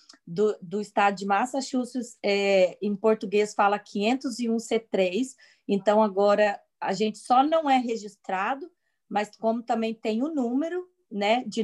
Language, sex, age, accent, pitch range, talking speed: Portuguese, female, 20-39, Brazilian, 205-255 Hz, 135 wpm